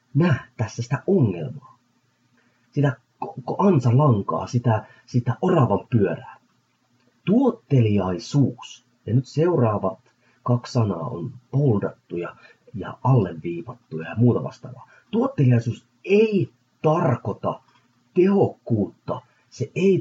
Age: 30-49